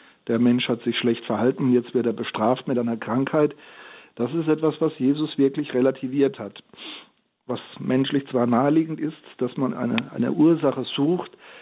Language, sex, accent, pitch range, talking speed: German, male, German, 125-145 Hz, 165 wpm